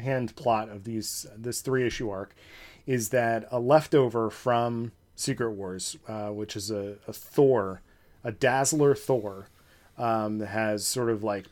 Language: English